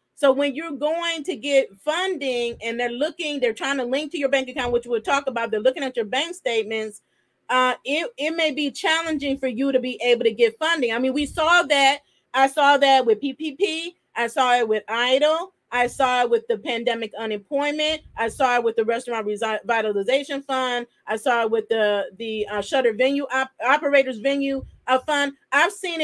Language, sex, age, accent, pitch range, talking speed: English, female, 30-49, American, 260-365 Hz, 205 wpm